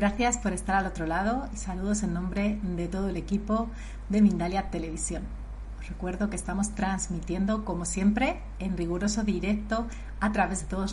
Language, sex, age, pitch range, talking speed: Spanish, female, 30-49, 185-215 Hz, 170 wpm